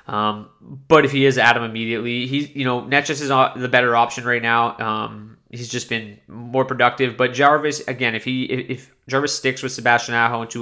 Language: English